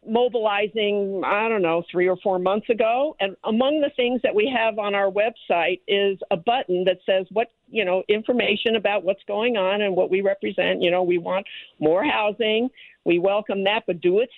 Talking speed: 200 wpm